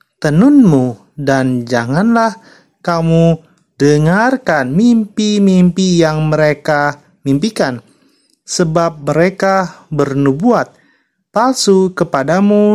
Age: 30-49